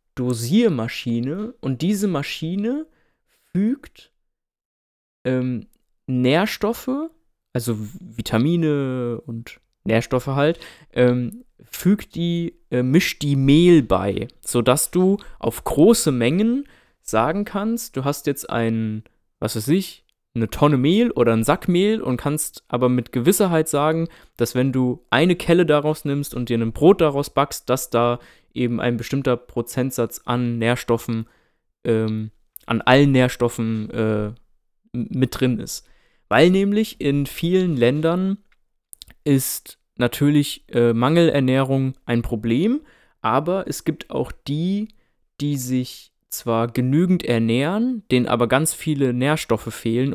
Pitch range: 120-160 Hz